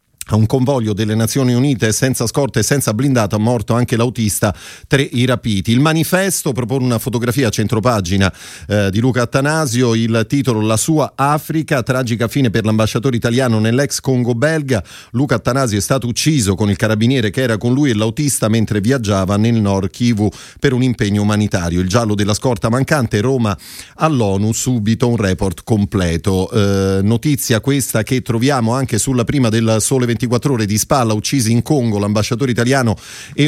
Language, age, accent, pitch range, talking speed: Italian, 30-49, native, 110-135 Hz, 170 wpm